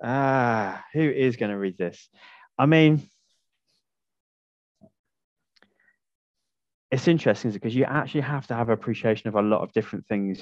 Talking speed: 140 wpm